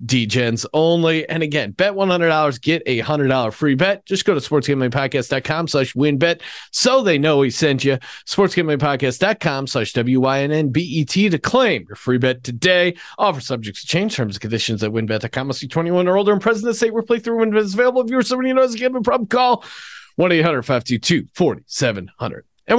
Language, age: English, 40-59